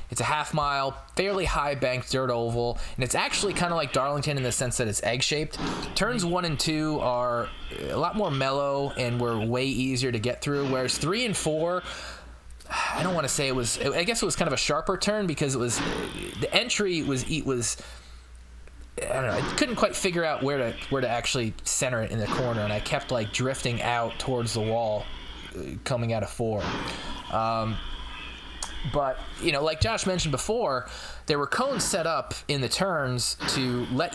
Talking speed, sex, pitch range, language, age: 205 wpm, male, 115-150 Hz, English, 20-39